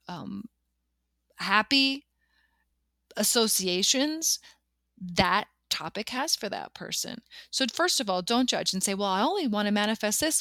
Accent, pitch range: American, 180-245 Hz